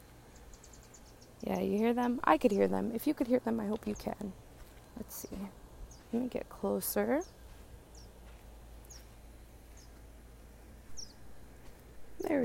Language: English